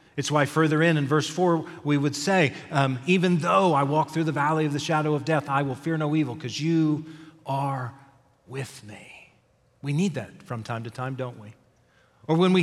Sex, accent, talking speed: male, American, 215 wpm